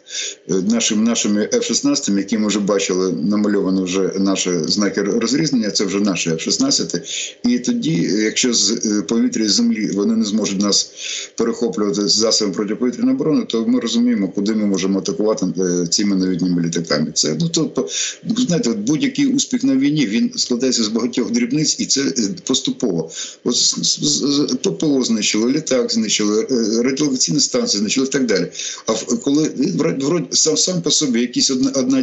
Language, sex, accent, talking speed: Ukrainian, male, native, 150 wpm